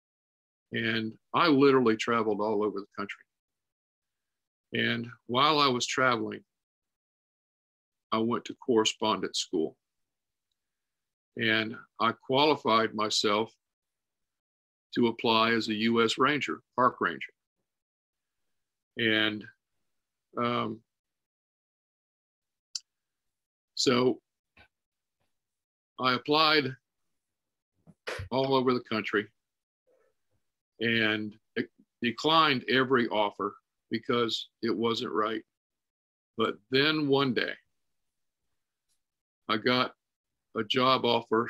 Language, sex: English, male